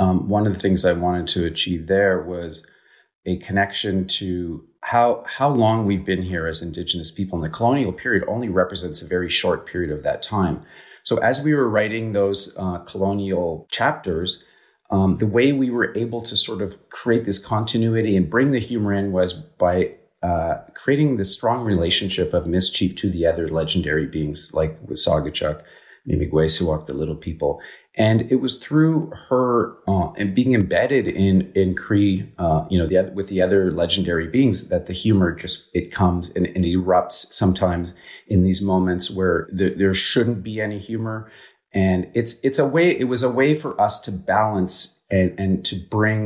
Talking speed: 180 wpm